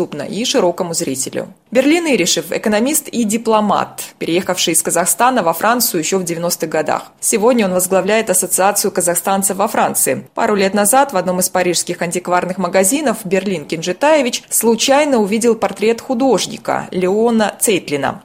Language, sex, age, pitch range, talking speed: Russian, female, 20-39, 185-235 Hz, 140 wpm